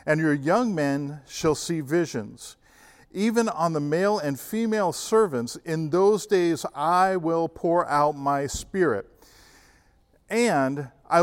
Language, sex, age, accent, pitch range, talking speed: English, male, 50-69, American, 140-190 Hz, 135 wpm